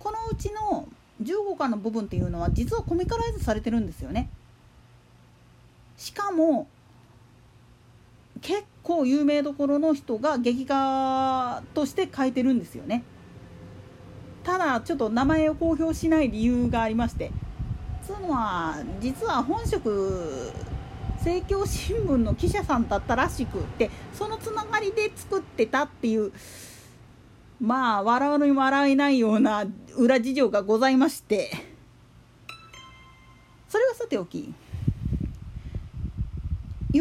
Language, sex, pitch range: Japanese, female, 220-345 Hz